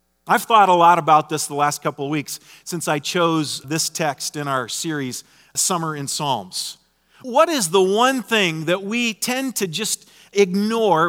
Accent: American